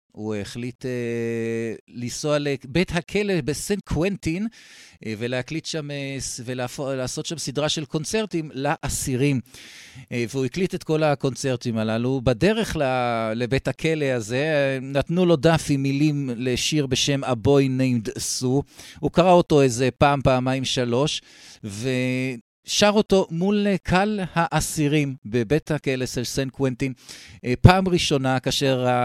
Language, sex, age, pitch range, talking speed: Hebrew, male, 50-69, 125-160 Hz, 120 wpm